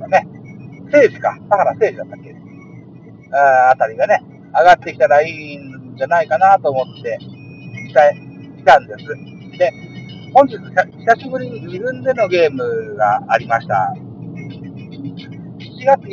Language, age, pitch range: Japanese, 50-69, 145-240 Hz